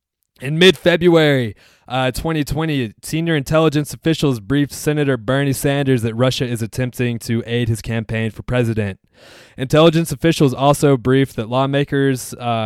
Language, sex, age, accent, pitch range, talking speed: English, male, 20-39, American, 110-130 Hz, 125 wpm